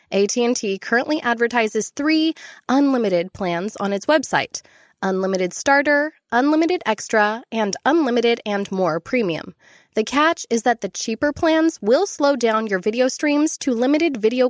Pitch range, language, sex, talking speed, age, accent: 210-280 Hz, English, female, 135 wpm, 10-29, American